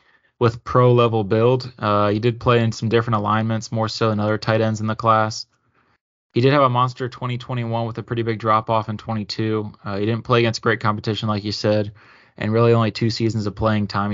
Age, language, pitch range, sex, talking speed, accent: 20-39, English, 105-120 Hz, male, 230 wpm, American